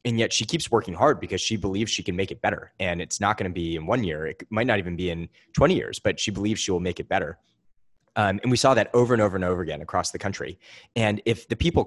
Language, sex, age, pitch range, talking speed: English, male, 20-39, 90-110 Hz, 290 wpm